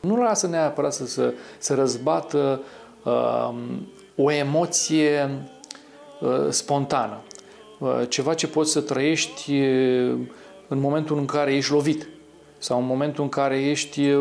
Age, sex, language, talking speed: 40-59, male, Romanian, 130 wpm